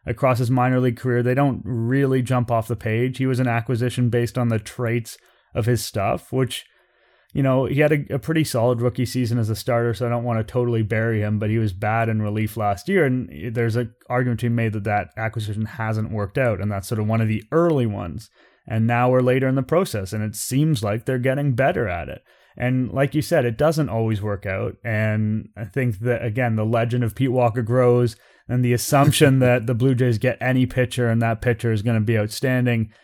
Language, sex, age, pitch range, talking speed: English, male, 30-49, 110-130 Hz, 235 wpm